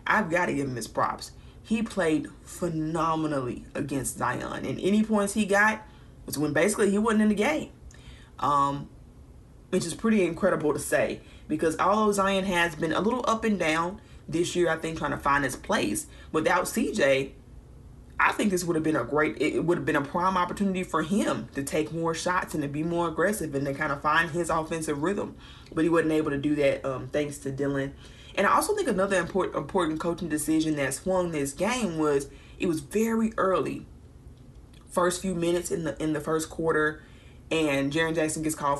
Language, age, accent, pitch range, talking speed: English, 20-39, American, 150-190 Hz, 200 wpm